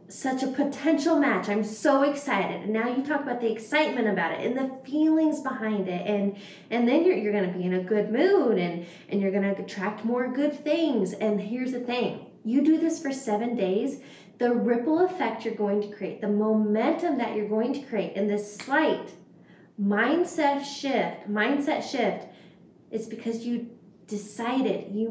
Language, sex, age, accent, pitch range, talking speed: English, female, 20-39, American, 205-255 Hz, 180 wpm